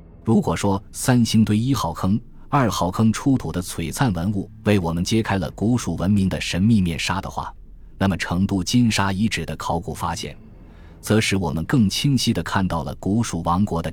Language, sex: Chinese, male